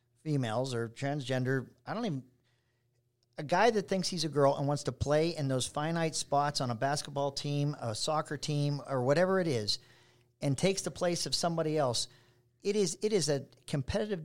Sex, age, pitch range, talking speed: male, 50-69, 130-170 Hz, 190 wpm